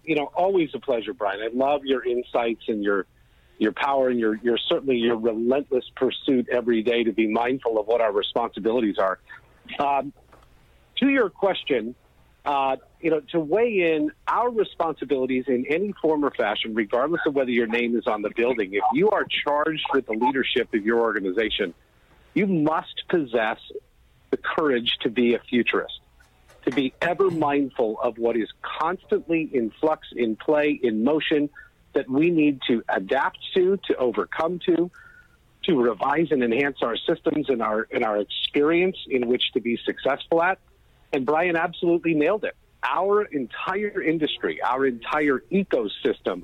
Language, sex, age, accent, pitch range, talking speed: English, male, 50-69, American, 120-165 Hz, 165 wpm